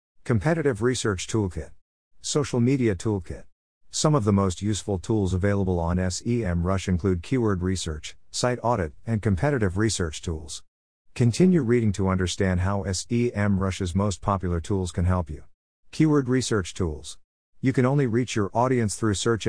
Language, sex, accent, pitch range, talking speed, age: English, male, American, 90-115 Hz, 145 wpm, 50-69